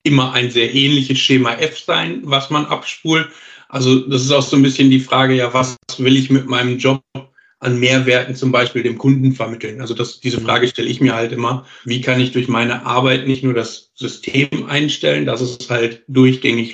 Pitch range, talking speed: 120-135 Hz, 200 wpm